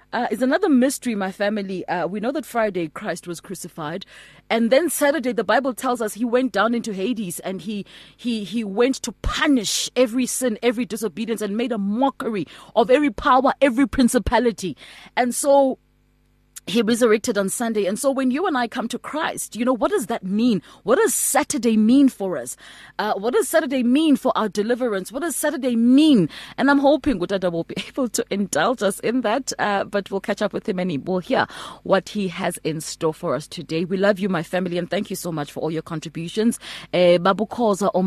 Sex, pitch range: female, 170-245 Hz